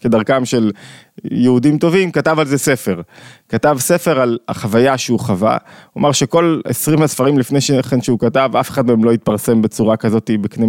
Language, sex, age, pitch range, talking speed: Hebrew, male, 20-39, 115-140 Hz, 175 wpm